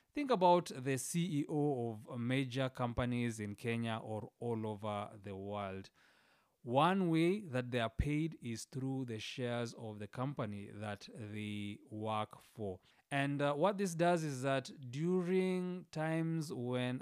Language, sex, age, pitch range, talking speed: English, male, 30-49, 115-150 Hz, 145 wpm